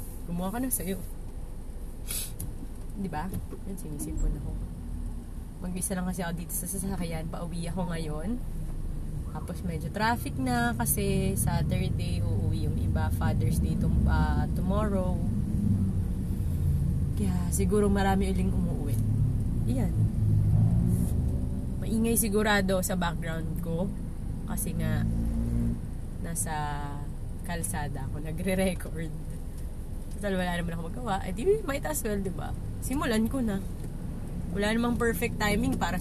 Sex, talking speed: female, 115 wpm